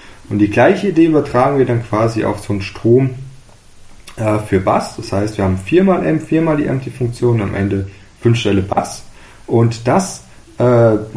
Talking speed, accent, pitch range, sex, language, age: 190 wpm, German, 100-125 Hz, male, German, 30-49